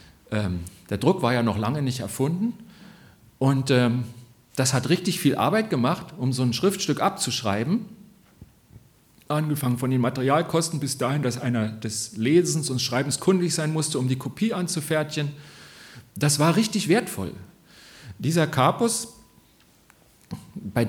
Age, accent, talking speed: 40-59, German, 130 wpm